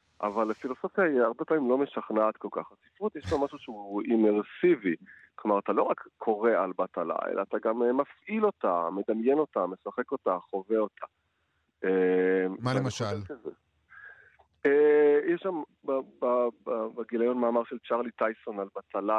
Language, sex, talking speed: Hebrew, male, 140 wpm